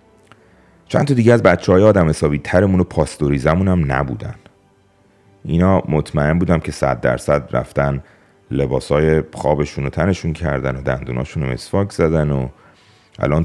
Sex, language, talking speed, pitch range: male, Persian, 140 wpm, 70-95 Hz